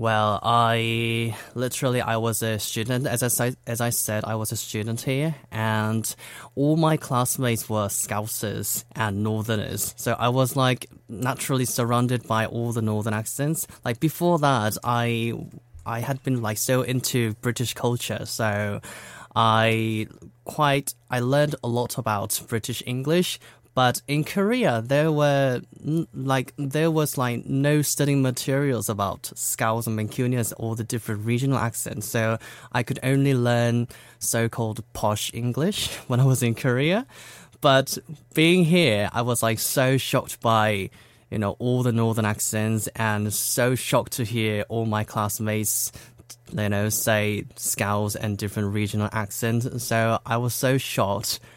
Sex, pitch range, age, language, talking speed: male, 110-130 Hz, 20-39, English, 150 wpm